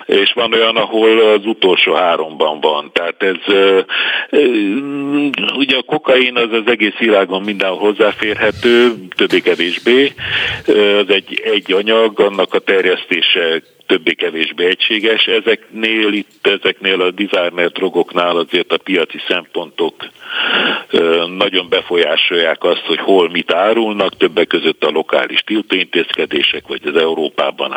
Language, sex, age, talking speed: Hungarian, male, 60-79, 115 wpm